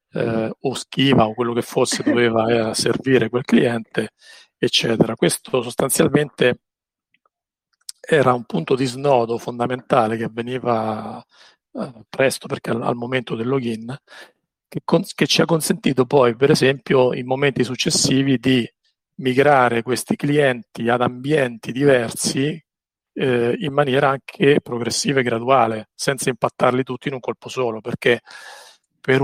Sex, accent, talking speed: male, native, 135 wpm